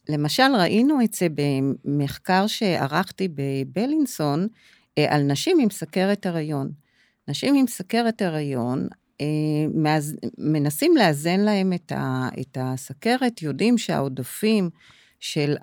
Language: Hebrew